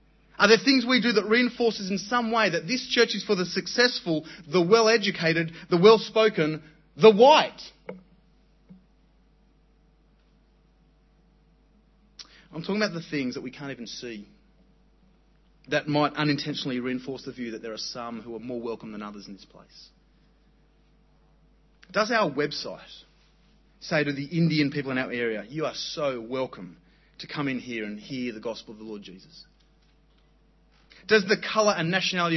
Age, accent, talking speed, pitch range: 30-49, Australian, 155 wpm, 135-200 Hz